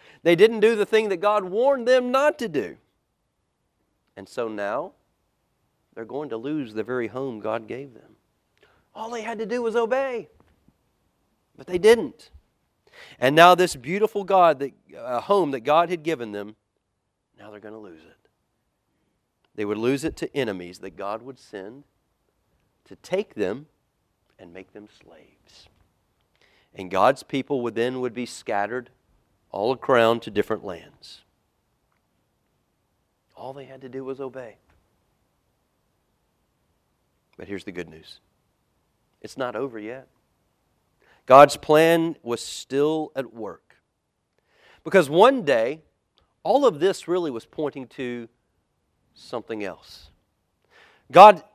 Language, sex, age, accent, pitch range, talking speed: English, male, 40-59, American, 110-180 Hz, 140 wpm